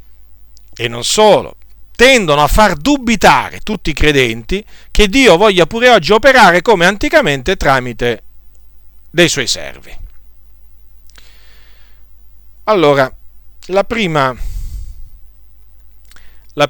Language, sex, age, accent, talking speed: Italian, male, 50-69, native, 90 wpm